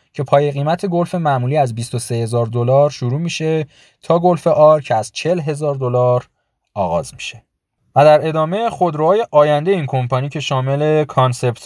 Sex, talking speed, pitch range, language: male, 155 wpm, 120-145 Hz, Persian